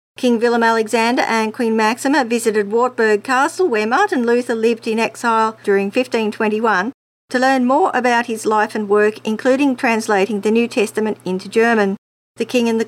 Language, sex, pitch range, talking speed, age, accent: English, female, 210-240 Hz, 170 wpm, 50-69, Australian